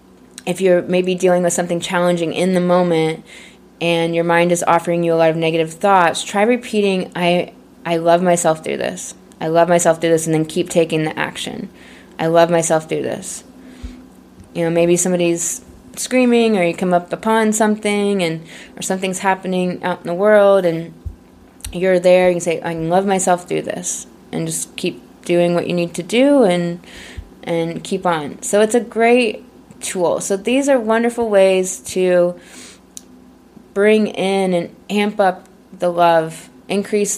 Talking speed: 170 wpm